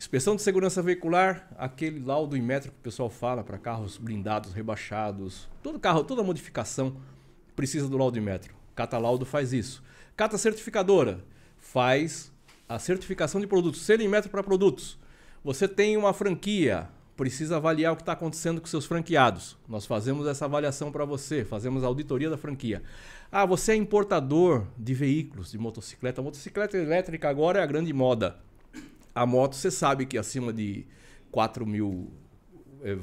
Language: Portuguese